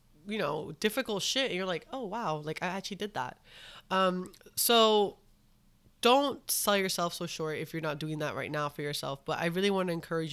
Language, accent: English, American